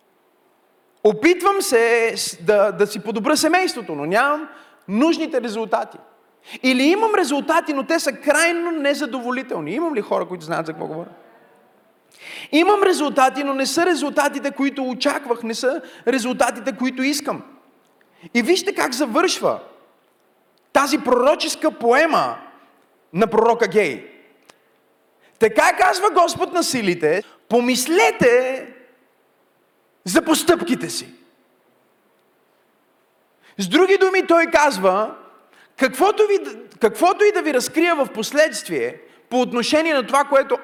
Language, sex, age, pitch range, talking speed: Bulgarian, male, 30-49, 210-310 Hz, 115 wpm